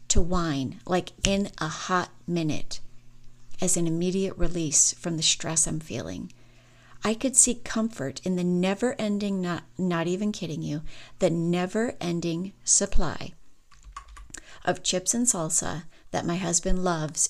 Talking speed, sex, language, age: 135 wpm, female, English, 40-59